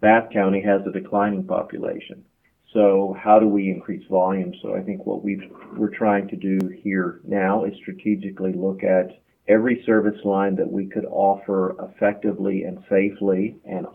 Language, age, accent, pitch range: English, 40-59, American, 100-110 Hz